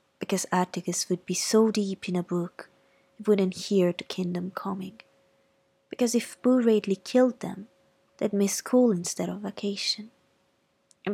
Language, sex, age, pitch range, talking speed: Italian, female, 20-39, 180-210 Hz, 150 wpm